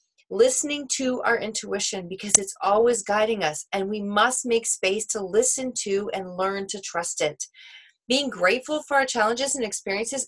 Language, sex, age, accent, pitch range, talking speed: English, female, 30-49, American, 170-225 Hz, 170 wpm